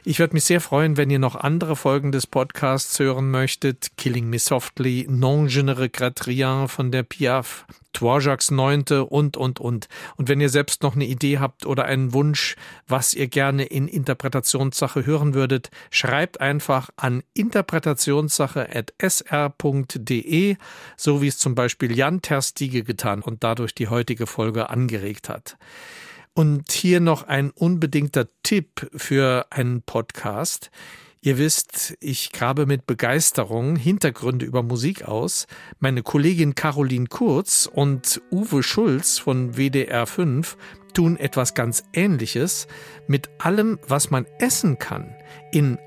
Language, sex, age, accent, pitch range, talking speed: German, male, 50-69, German, 130-150 Hz, 135 wpm